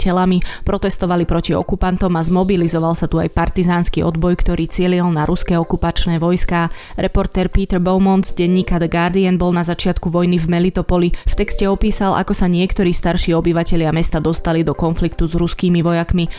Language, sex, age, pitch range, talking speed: Slovak, female, 20-39, 165-185 Hz, 165 wpm